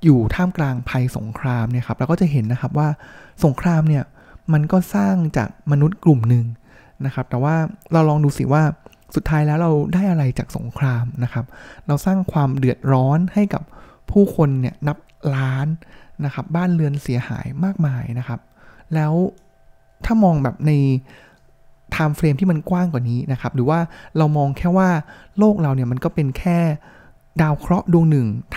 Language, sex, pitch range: Thai, male, 130-170 Hz